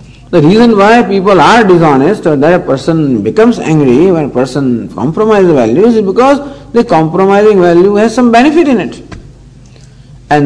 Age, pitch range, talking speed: 50-69, 130-200 Hz, 165 wpm